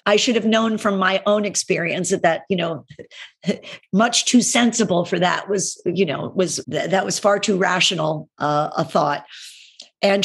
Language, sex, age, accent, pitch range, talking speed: English, female, 50-69, American, 160-205 Hz, 175 wpm